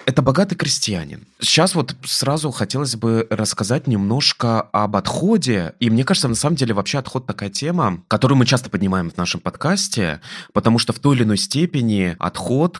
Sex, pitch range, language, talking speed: male, 90-120 Hz, Russian, 175 wpm